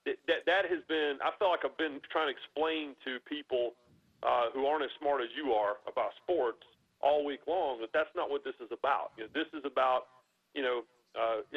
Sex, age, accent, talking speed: male, 40-59, American, 200 wpm